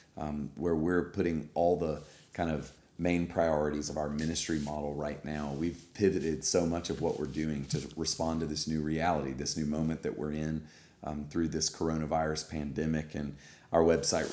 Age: 40-59